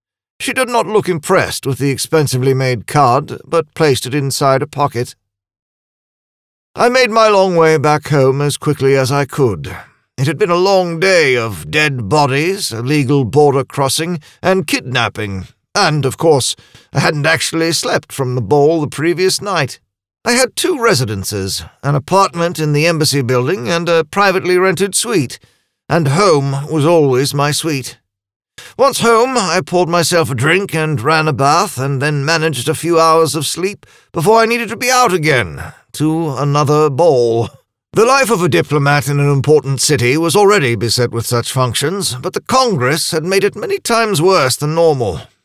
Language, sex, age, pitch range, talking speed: English, male, 50-69, 130-170 Hz, 175 wpm